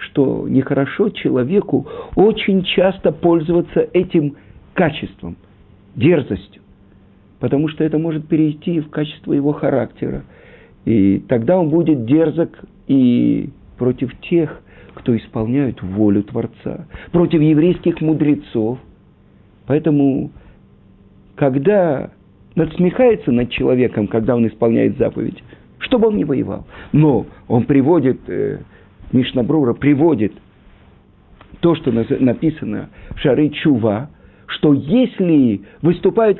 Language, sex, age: Russian, male, 50-69